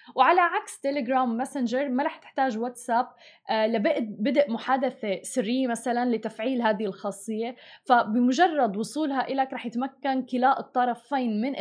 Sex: female